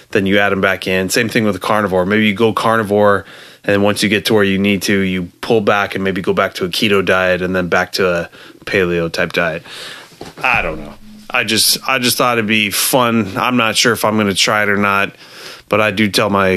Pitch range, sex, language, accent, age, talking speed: 95-115 Hz, male, English, American, 20-39, 270 wpm